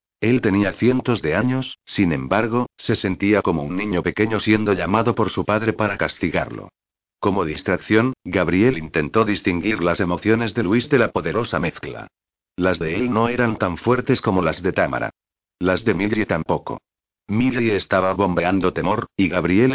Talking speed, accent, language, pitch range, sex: 165 wpm, Spanish, Spanish, 95-115 Hz, male